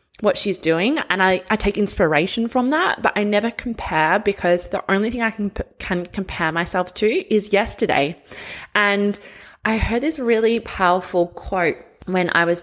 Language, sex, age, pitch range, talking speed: English, female, 20-39, 175-220 Hz, 170 wpm